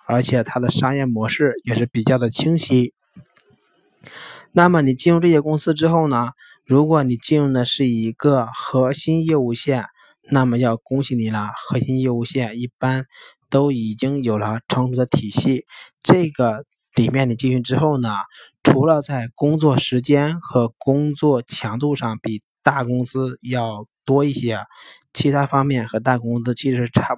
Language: Chinese